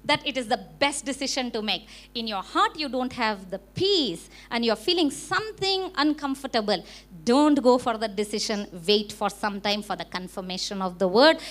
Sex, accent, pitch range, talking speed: female, Indian, 210-305 Hz, 190 wpm